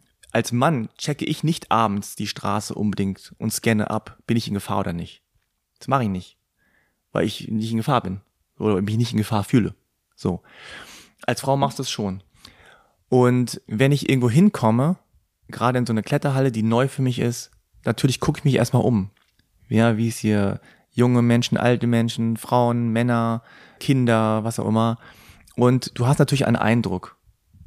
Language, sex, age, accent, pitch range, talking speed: German, male, 30-49, German, 110-130 Hz, 180 wpm